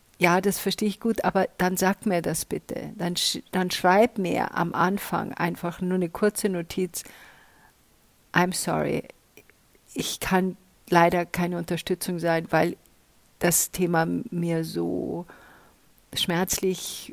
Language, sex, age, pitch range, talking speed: German, female, 50-69, 170-200 Hz, 130 wpm